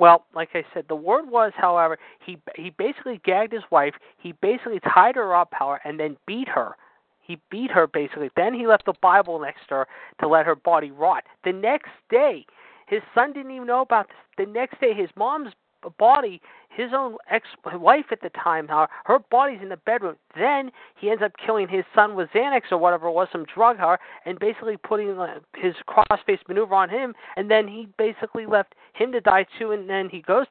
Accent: American